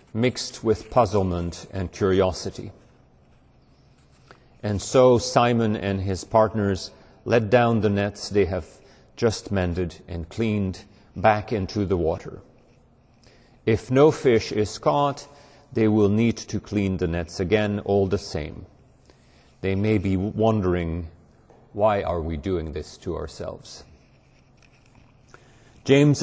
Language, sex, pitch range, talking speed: English, male, 95-120 Hz, 120 wpm